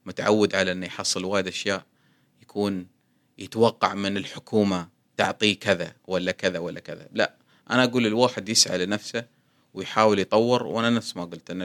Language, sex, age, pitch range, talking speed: Arabic, male, 30-49, 90-120 Hz, 150 wpm